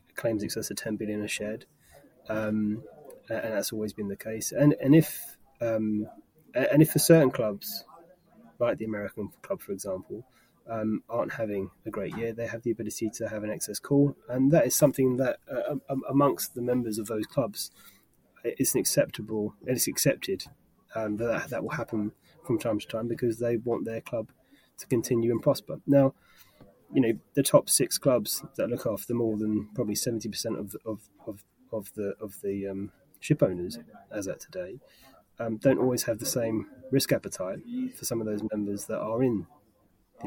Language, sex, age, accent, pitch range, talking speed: English, male, 20-39, British, 105-135 Hz, 185 wpm